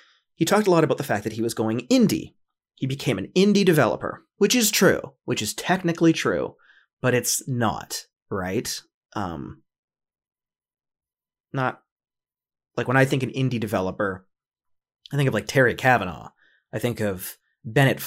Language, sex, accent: English, male, American